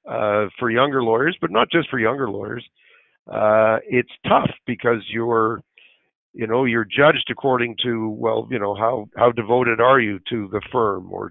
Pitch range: 105-120 Hz